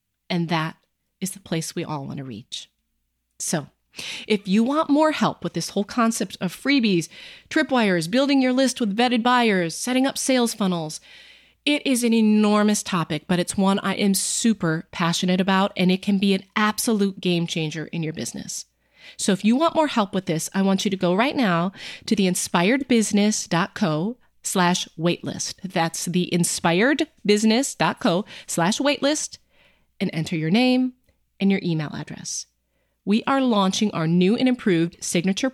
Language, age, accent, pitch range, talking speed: English, 30-49, American, 180-240 Hz, 165 wpm